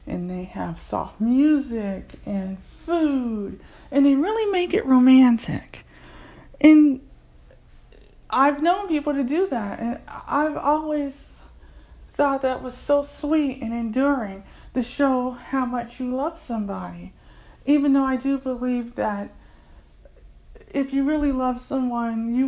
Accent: American